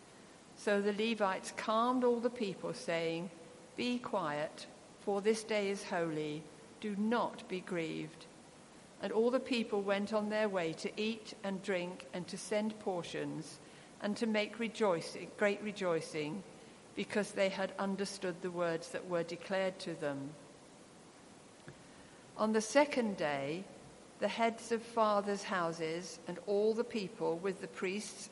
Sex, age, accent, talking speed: female, 50-69, British, 140 wpm